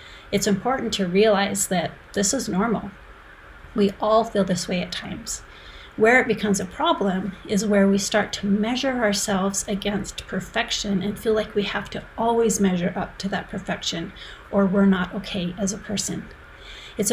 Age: 40-59